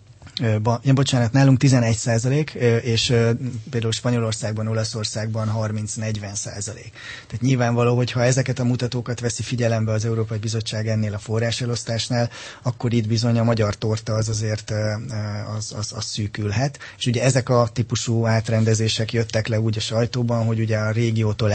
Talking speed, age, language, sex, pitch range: 145 wpm, 20-39, Hungarian, male, 110-120 Hz